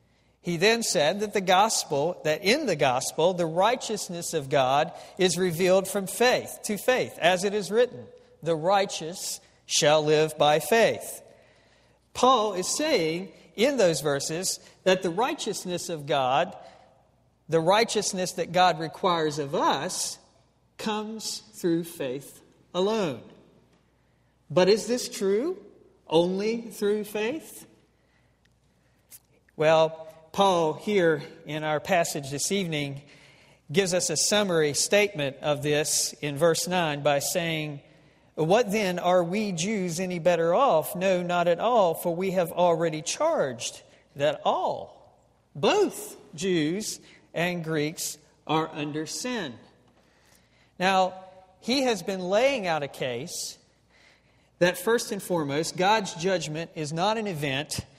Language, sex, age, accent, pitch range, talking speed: English, male, 50-69, American, 155-205 Hz, 125 wpm